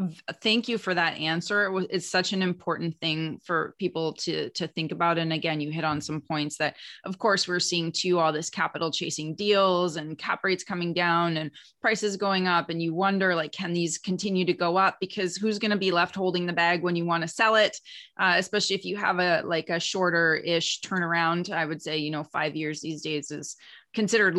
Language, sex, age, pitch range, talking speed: English, female, 20-39, 160-190 Hz, 220 wpm